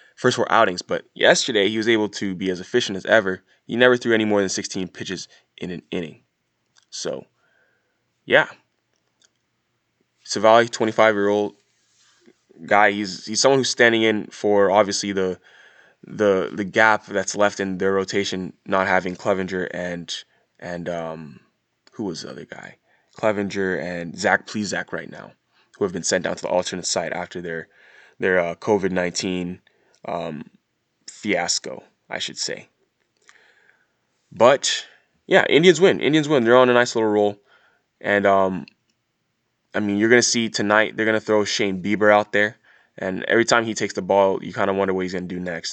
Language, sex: English, male